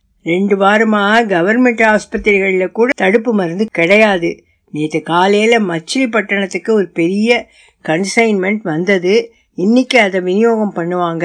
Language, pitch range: Tamil, 175-225 Hz